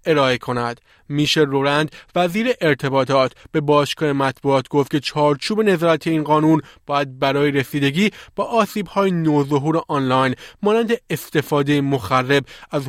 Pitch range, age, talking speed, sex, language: 140-180 Hz, 20-39, 120 wpm, male, Persian